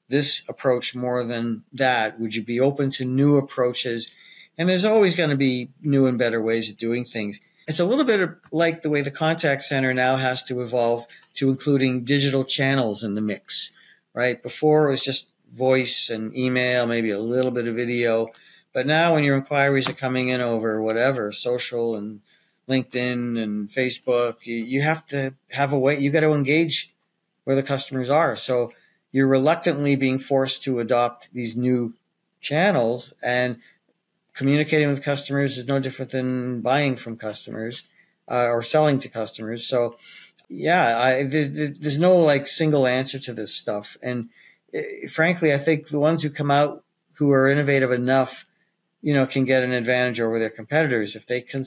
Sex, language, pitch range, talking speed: male, English, 120-145 Hz, 180 wpm